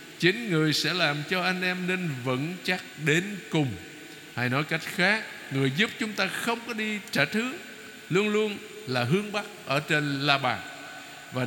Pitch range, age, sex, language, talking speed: 125-180 Hz, 60-79, male, Vietnamese, 185 wpm